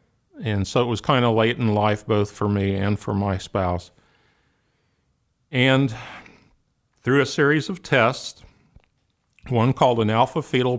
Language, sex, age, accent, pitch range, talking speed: English, male, 50-69, American, 100-120 Hz, 145 wpm